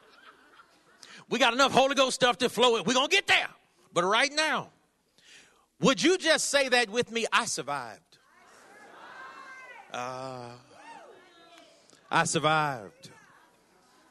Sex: male